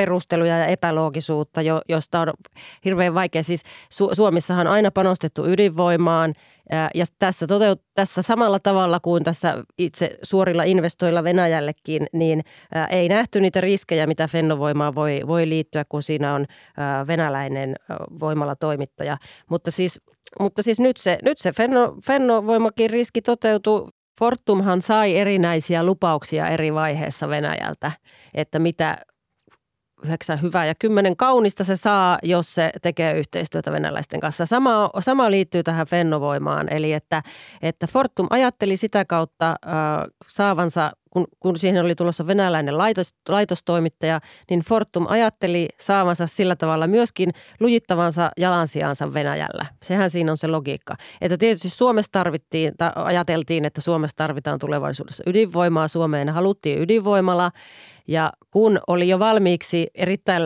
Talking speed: 125 wpm